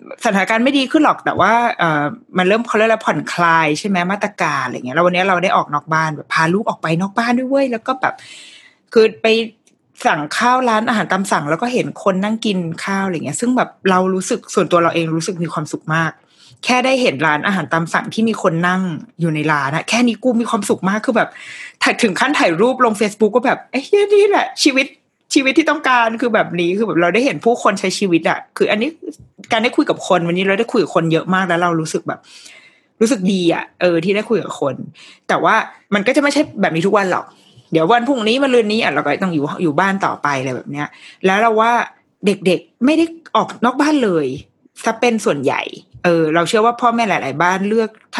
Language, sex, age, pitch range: Thai, female, 20-39, 175-240 Hz